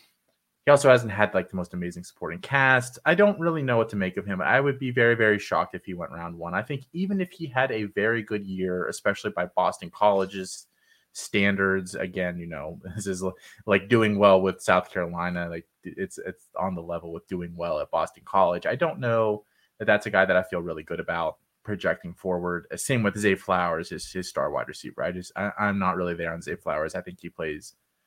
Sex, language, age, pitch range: male, English, 20-39, 90-125 Hz